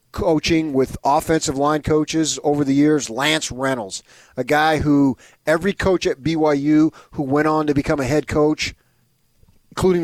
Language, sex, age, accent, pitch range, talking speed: English, male, 40-59, American, 135-170 Hz, 155 wpm